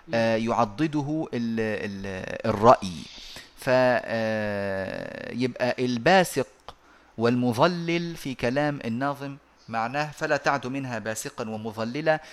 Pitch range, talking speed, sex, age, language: 115-165 Hz, 70 wpm, male, 30-49, Arabic